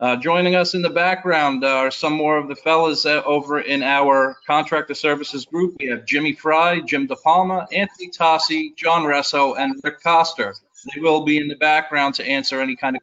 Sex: male